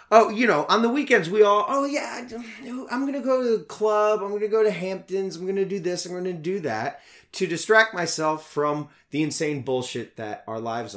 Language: English